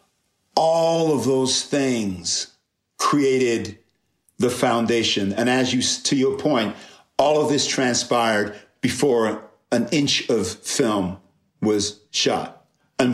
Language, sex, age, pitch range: English, male, 50-69, 110-130 Hz